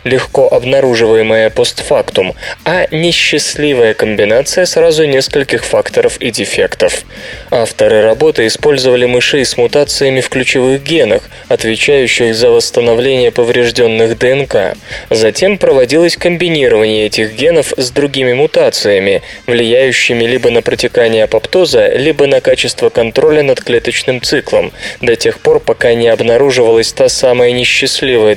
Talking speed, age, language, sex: 115 wpm, 20-39, Russian, male